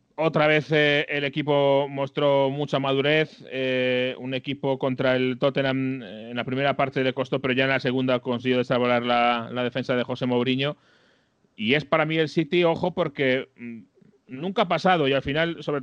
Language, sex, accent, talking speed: Spanish, male, Spanish, 180 wpm